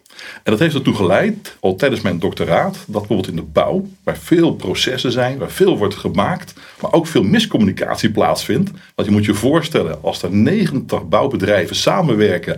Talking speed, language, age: 175 wpm, Dutch, 60-79